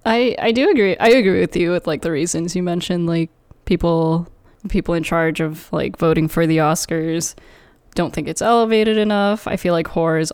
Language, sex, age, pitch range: English, female, 10-29, 165-210 Hz